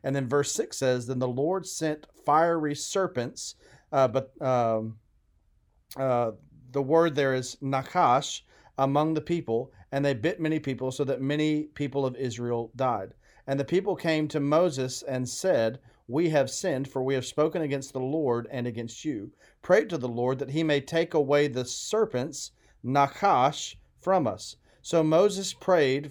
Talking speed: 170 wpm